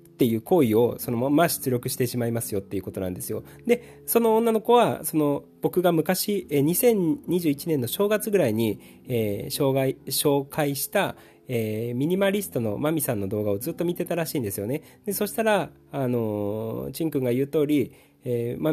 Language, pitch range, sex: Japanese, 130-185 Hz, male